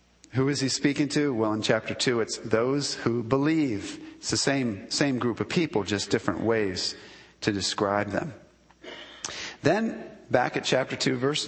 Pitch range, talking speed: 110-145 Hz, 165 wpm